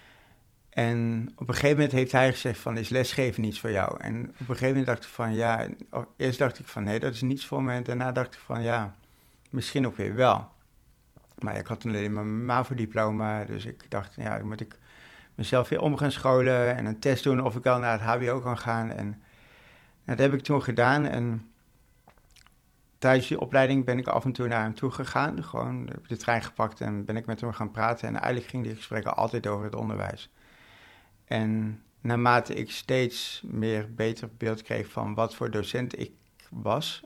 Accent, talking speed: Dutch, 205 wpm